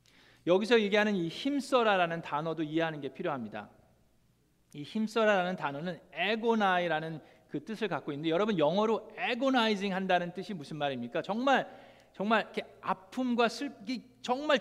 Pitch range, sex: 170-235 Hz, male